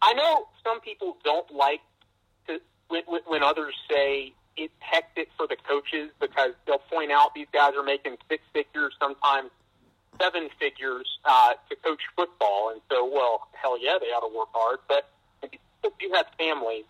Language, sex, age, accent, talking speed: English, male, 40-59, American, 165 wpm